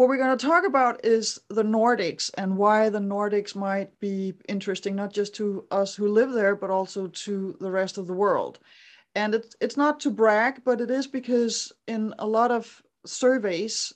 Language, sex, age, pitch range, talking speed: English, female, 30-49, 180-215 Hz, 195 wpm